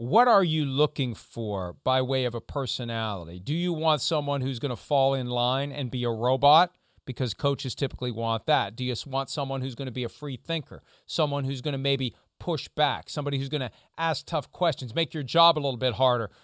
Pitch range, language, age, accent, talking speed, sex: 130-170 Hz, English, 40-59, American, 225 wpm, male